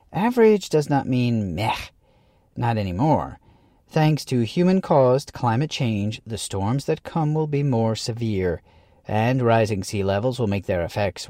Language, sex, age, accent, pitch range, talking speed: English, male, 40-59, American, 110-155 Hz, 150 wpm